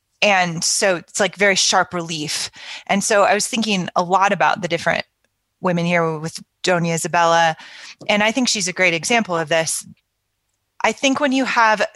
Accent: American